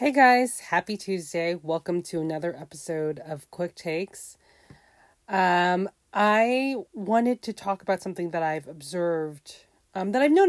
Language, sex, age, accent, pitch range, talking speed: English, female, 30-49, American, 160-195 Hz, 145 wpm